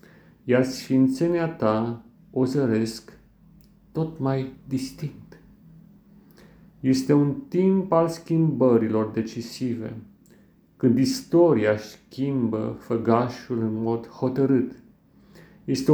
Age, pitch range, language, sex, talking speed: 40-59, 115-165 Hz, Romanian, male, 85 wpm